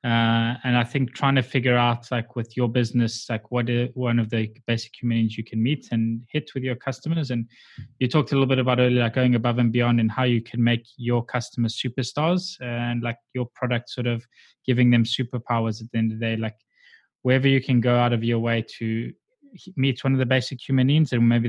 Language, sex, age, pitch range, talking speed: English, male, 20-39, 115-130 Hz, 235 wpm